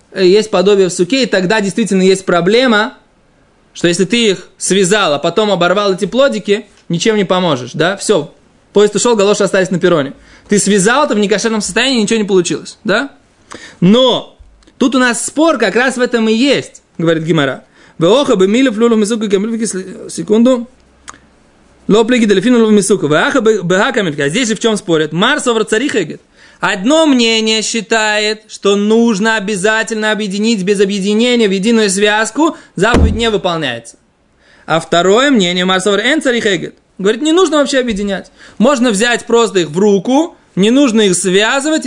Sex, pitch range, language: male, 195-240 Hz, Russian